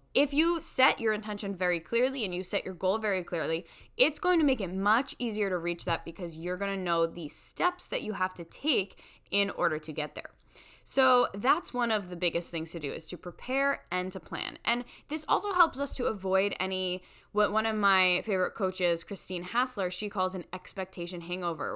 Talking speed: 210 wpm